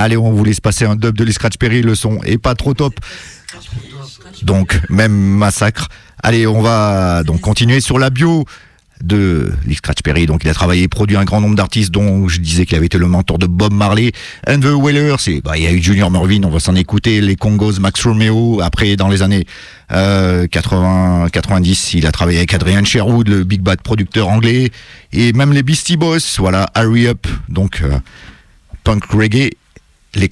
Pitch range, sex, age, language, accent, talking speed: 90-115 Hz, male, 40-59, English, French, 195 wpm